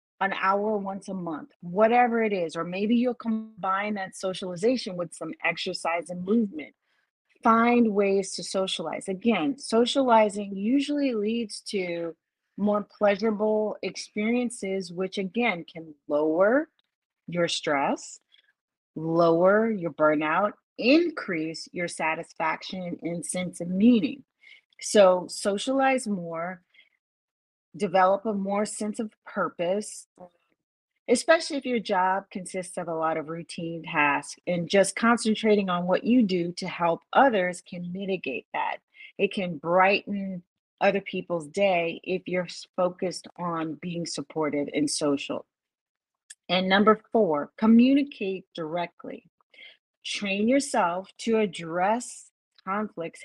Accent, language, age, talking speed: American, English, 30-49, 115 wpm